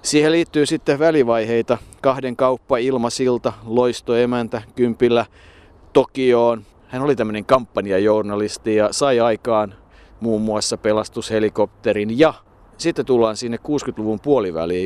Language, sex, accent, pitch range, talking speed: Finnish, male, native, 105-125 Hz, 115 wpm